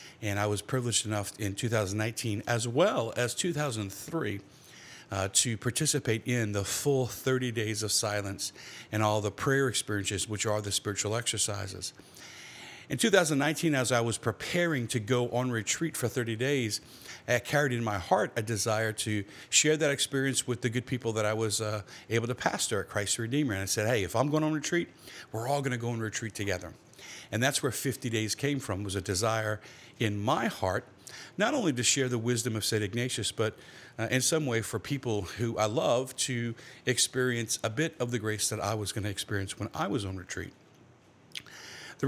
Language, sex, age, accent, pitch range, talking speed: English, male, 50-69, American, 105-130 Hz, 195 wpm